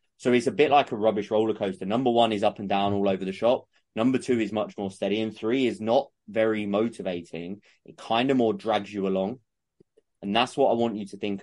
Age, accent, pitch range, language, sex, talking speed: 20-39, British, 100-115 Hz, English, male, 240 wpm